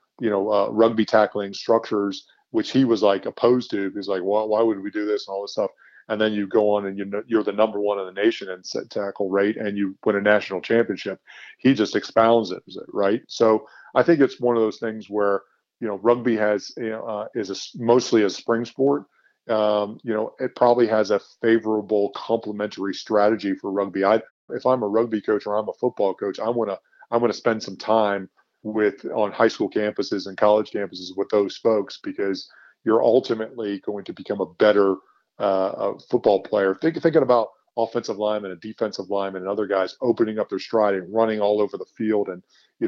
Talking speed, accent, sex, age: 210 wpm, American, male, 40-59